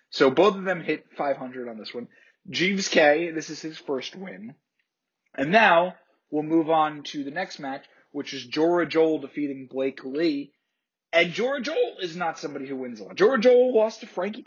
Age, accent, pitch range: 20-39, American, 140-185 Hz